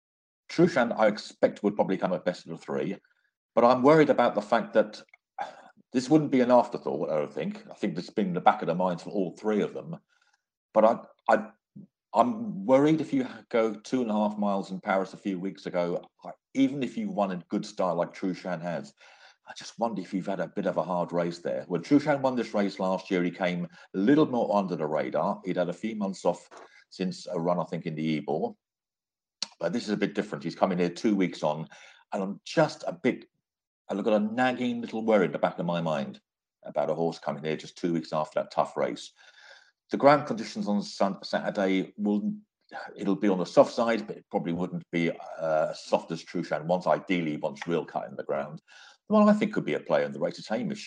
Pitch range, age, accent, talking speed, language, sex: 85-115 Hz, 50-69, British, 230 wpm, English, male